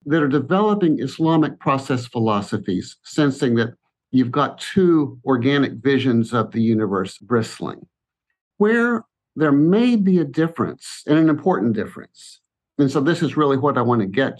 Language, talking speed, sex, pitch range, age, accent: English, 155 wpm, male, 120-155 Hz, 50-69, American